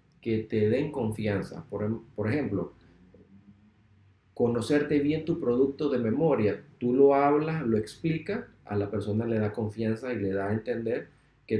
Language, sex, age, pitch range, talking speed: Spanish, male, 40-59, 100-135 Hz, 155 wpm